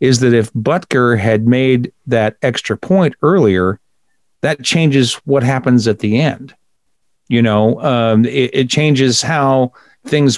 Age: 50-69